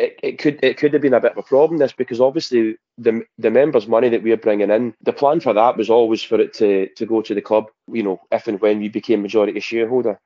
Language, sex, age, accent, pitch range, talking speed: English, male, 20-39, British, 110-125 Hz, 275 wpm